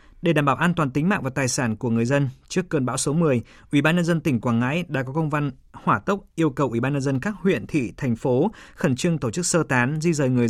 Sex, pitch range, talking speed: male, 125-155 Hz, 290 wpm